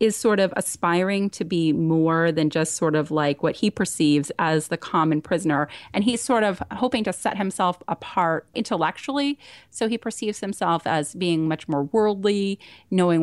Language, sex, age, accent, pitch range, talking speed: English, female, 30-49, American, 160-205 Hz, 175 wpm